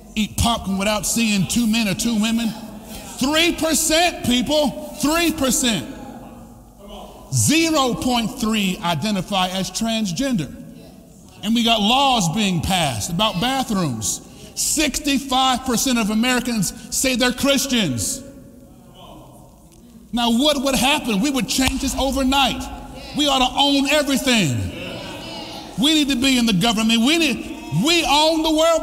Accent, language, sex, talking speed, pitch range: American, English, male, 130 wpm, 215-265 Hz